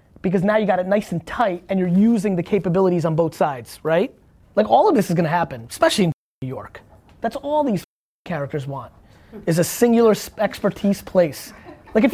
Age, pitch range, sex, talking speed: 20-39, 170-235 Hz, male, 200 wpm